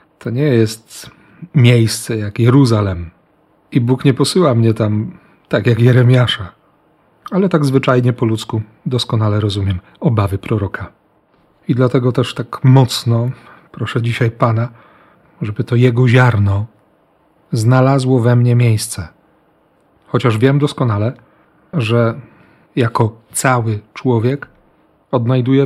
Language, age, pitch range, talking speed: Polish, 40-59, 115-135 Hz, 110 wpm